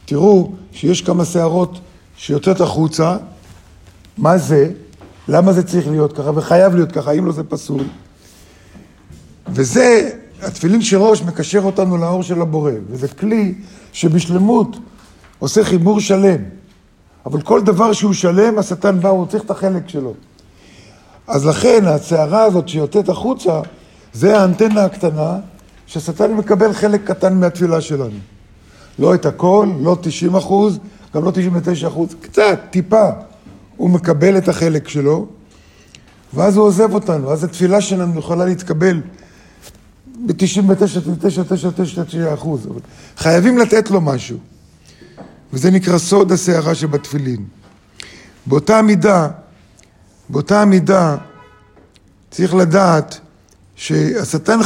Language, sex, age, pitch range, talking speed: Hebrew, male, 50-69, 145-195 Hz, 115 wpm